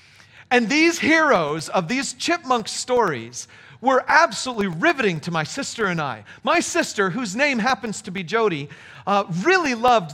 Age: 40-59